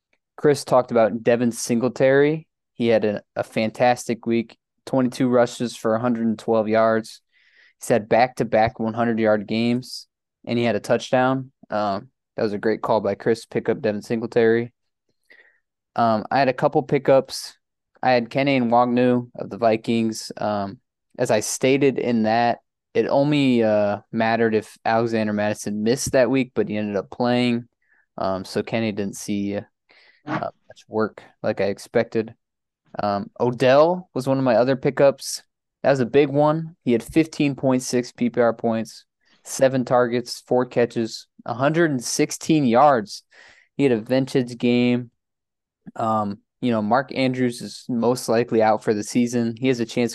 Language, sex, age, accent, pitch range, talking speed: English, male, 20-39, American, 110-125 Hz, 160 wpm